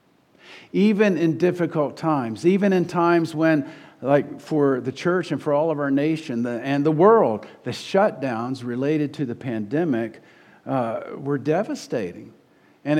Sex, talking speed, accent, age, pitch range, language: male, 145 wpm, American, 50-69, 120-155 Hz, English